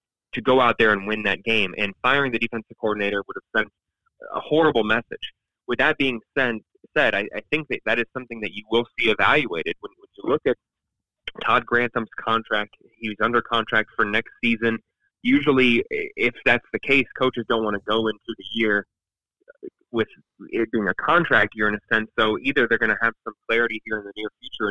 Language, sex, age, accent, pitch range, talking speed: English, male, 20-39, American, 110-130 Hz, 200 wpm